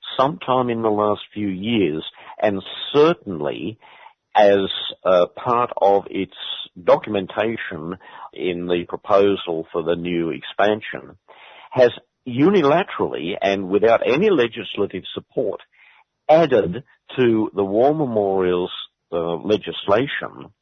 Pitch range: 85-115 Hz